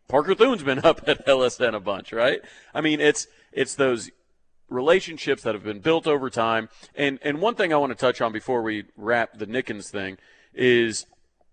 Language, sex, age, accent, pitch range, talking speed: English, male, 30-49, American, 115-140 Hz, 195 wpm